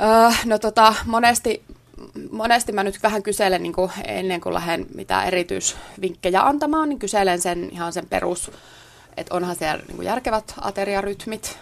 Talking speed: 120 wpm